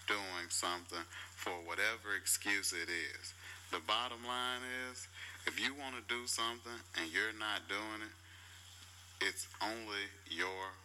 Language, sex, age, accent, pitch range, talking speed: English, male, 30-49, American, 90-105 Hz, 140 wpm